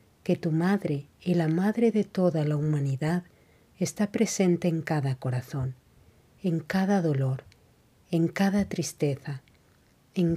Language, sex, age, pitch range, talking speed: Spanish, female, 50-69, 140-180 Hz, 125 wpm